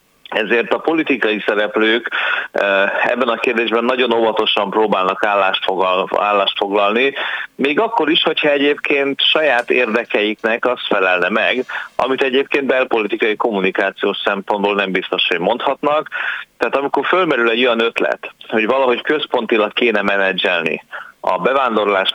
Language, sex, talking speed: Hungarian, male, 125 wpm